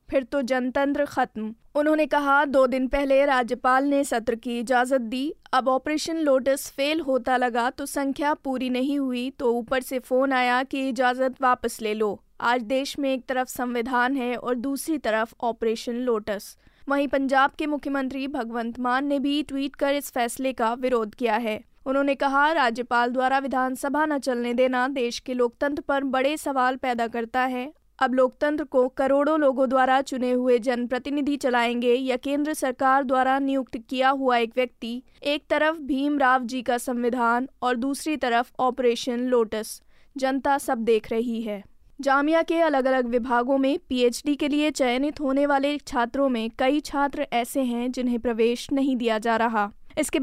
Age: 20-39